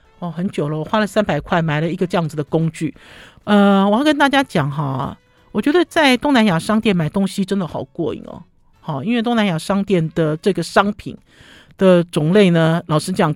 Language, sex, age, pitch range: Chinese, male, 50-69, 160-215 Hz